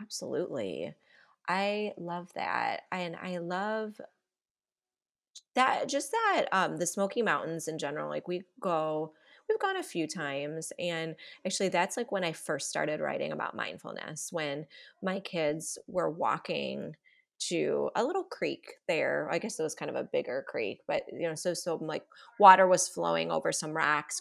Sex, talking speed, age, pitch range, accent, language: female, 165 wpm, 20-39, 170-220 Hz, American, English